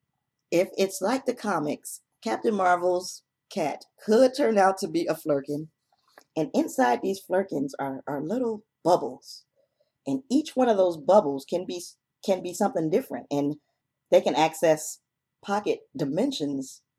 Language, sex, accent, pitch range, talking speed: English, female, American, 150-205 Hz, 145 wpm